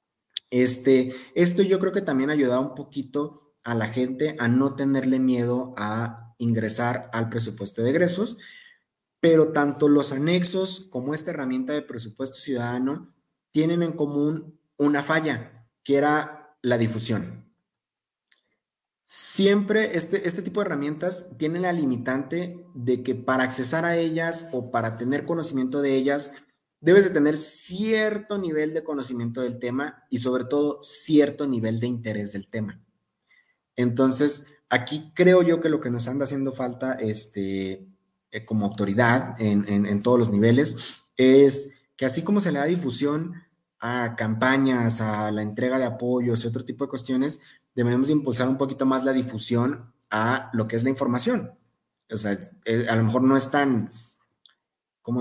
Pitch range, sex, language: 120-150 Hz, male, Spanish